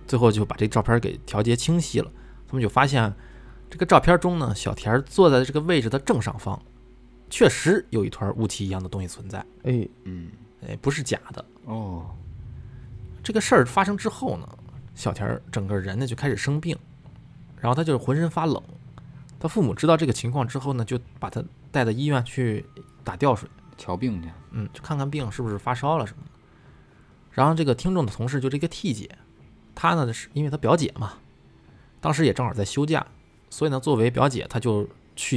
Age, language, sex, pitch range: 20-39, Chinese, male, 105-145 Hz